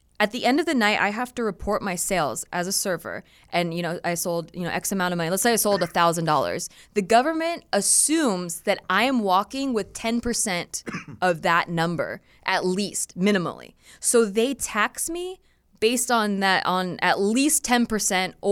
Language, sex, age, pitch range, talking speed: English, female, 20-39, 175-230 Hz, 190 wpm